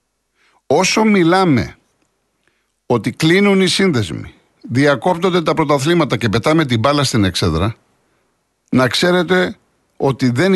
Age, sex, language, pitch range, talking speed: 50-69, male, Greek, 130-185 Hz, 110 wpm